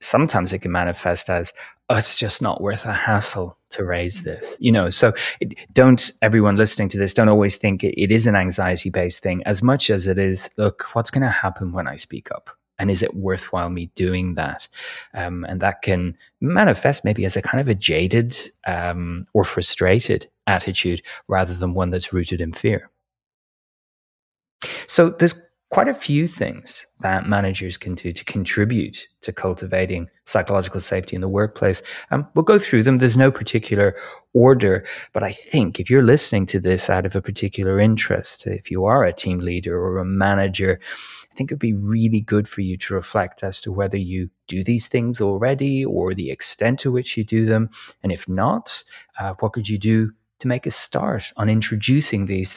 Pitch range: 95-110 Hz